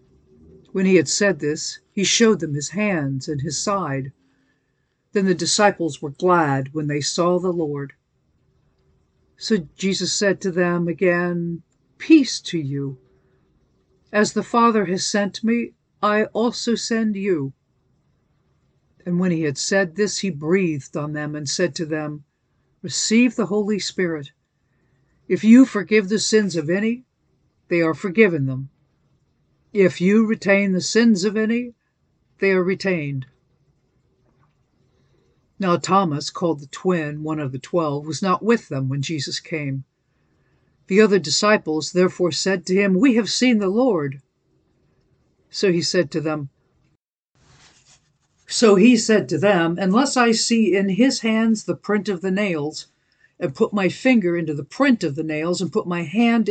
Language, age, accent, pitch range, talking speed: English, 60-79, American, 150-210 Hz, 155 wpm